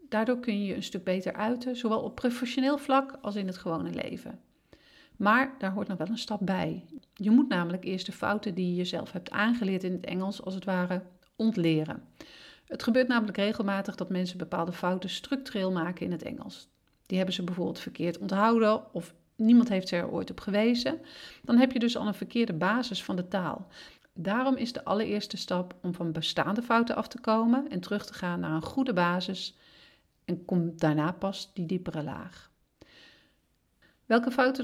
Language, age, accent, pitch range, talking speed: Dutch, 40-59, Dutch, 180-230 Hz, 190 wpm